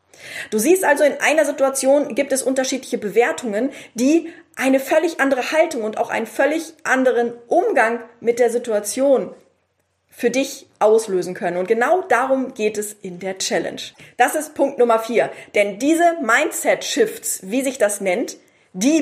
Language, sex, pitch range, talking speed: German, female, 220-275 Hz, 155 wpm